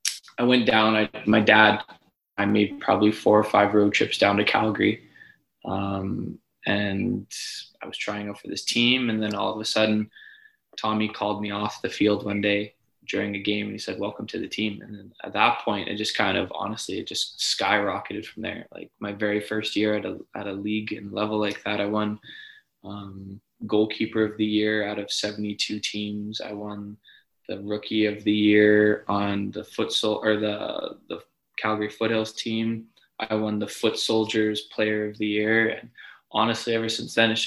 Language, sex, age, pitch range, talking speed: English, male, 20-39, 105-115 Hz, 195 wpm